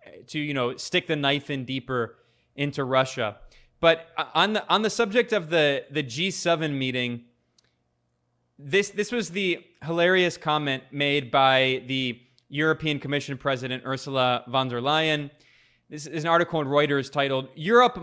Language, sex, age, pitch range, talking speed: English, male, 20-39, 130-160 Hz, 150 wpm